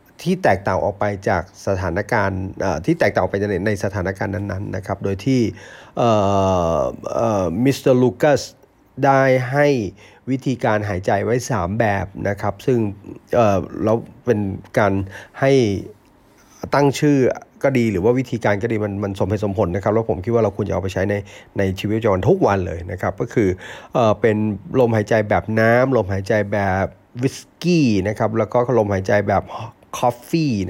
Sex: male